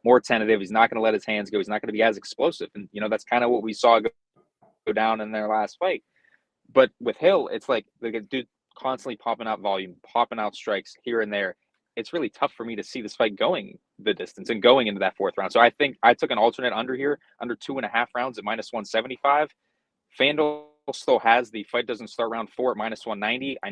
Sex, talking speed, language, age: male, 250 wpm, English, 20-39